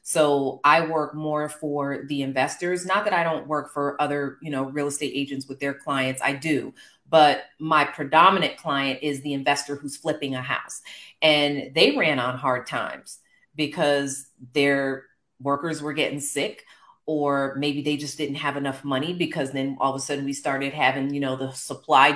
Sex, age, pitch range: female, 30-49, 135-155 Hz